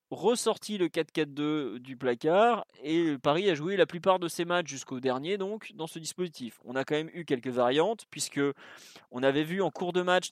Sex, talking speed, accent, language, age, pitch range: male, 205 wpm, French, French, 30-49, 135-170 Hz